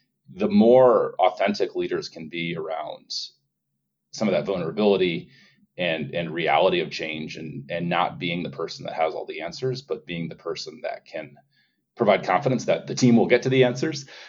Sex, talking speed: male, 180 wpm